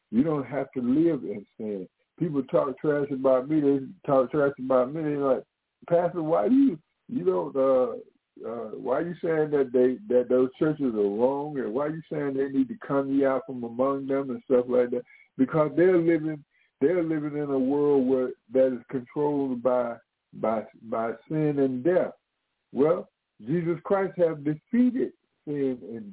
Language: English